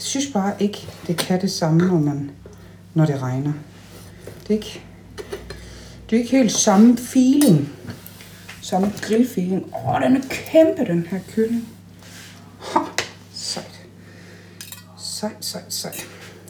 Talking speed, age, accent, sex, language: 135 wpm, 60-79, native, female, Danish